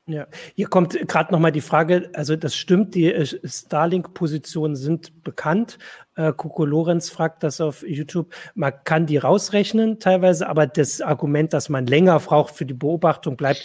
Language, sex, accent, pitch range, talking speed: German, male, German, 140-165 Hz, 160 wpm